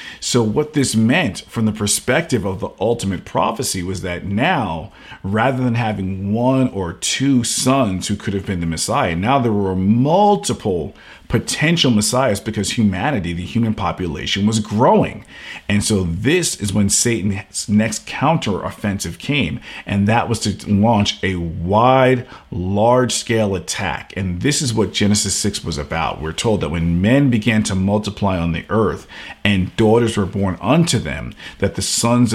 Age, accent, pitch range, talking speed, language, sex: 50-69, American, 95-120 Hz, 160 wpm, English, male